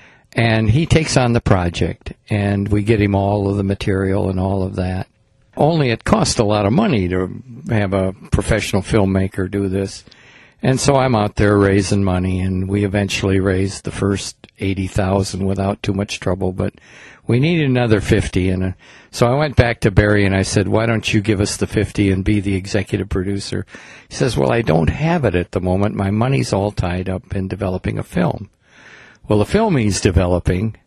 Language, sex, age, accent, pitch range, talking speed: English, male, 60-79, American, 95-115 Hz, 195 wpm